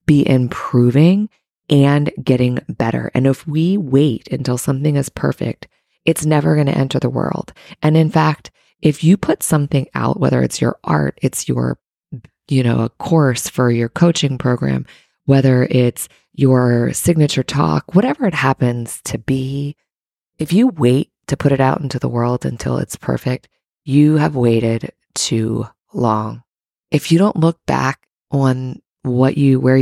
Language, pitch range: English, 120-150 Hz